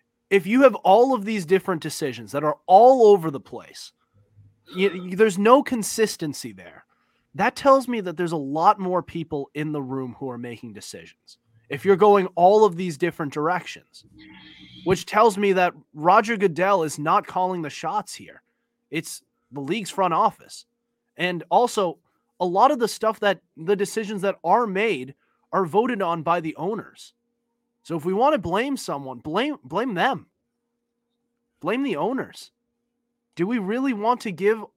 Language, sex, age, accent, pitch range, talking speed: English, male, 30-49, American, 165-235 Hz, 165 wpm